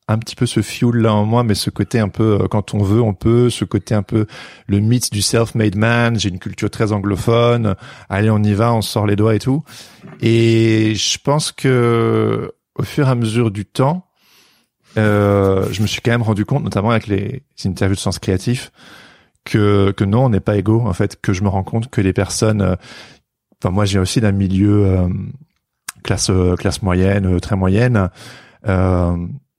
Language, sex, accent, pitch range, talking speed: French, male, French, 100-115 Hz, 210 wpm